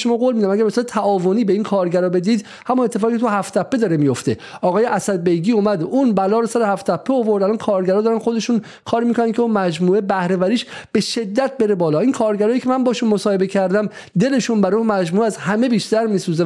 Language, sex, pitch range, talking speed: Persian, male, 180-230 Hz, 210 wpm